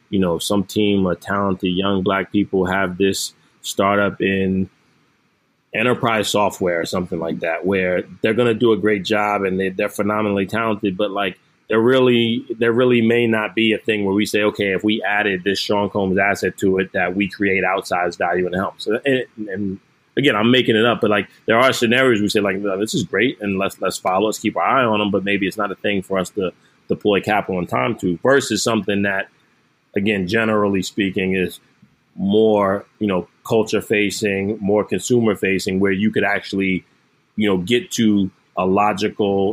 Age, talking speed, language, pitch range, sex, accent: 20-39, 200 wpm, English, 95-110 Hz, male, American